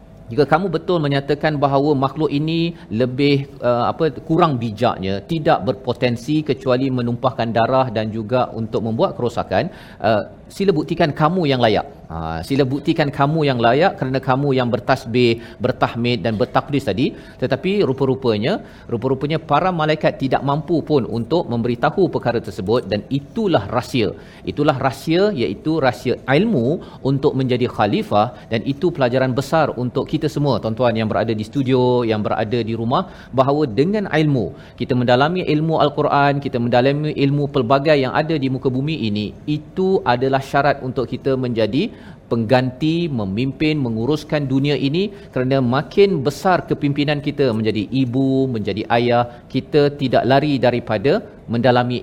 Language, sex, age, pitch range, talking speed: Malayalam, male, 40-59, 120-145 Hz, 140 wpm